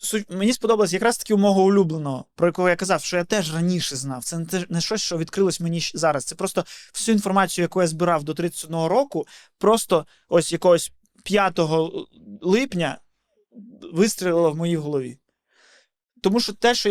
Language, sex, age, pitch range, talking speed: Ukrainian, male, 20-39, 160-205 Hz, 170 wpm